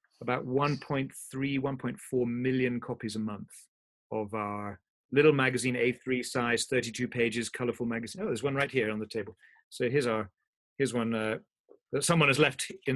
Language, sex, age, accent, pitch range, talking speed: English, male, 40-59, British, 120-165 Hz, 170 wpm